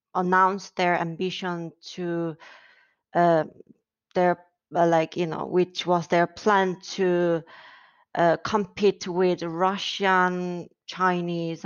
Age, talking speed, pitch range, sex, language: 20-39, 105 wpm, 170-190 Hz, female, English